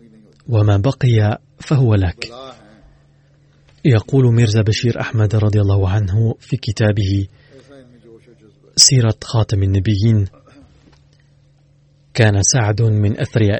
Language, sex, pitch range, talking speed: Arabic, male, 105-130 Hz, 90 wpm